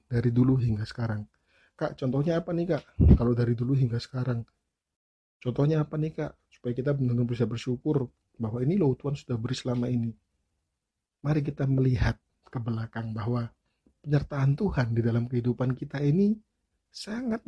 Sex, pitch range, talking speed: male, 115-140 Hz, 150 wpm